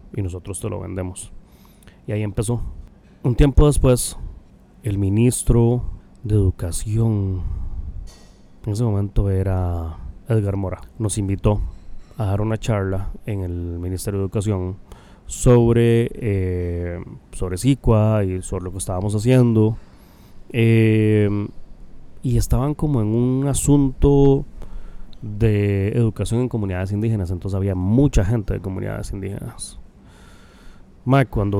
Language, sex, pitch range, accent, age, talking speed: Spanish, male, 95-115 Hz, Mexican, 30-49, 120 wpm